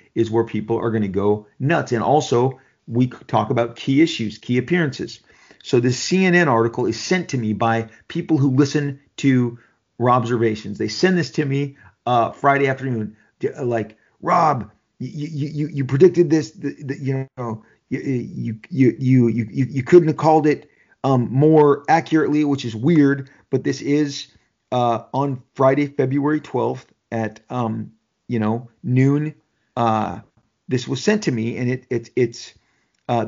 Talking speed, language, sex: 170 wpm, English, male